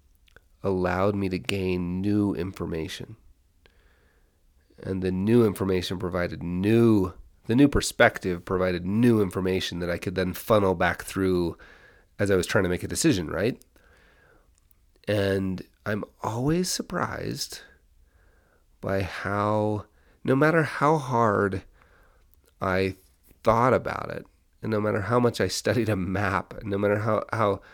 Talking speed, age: 130 wpm, 30-49